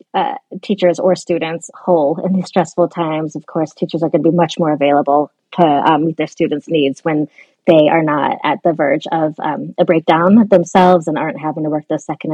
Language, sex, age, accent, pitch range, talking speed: English, female, 30-49, American, 165-195 Hz, 215 wpm